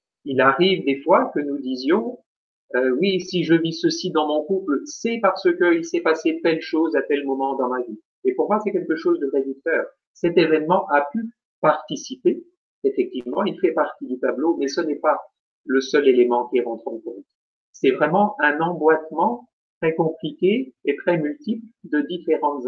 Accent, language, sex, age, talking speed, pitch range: French, French, male, 50-69, 190 wpm, 145-245 Hz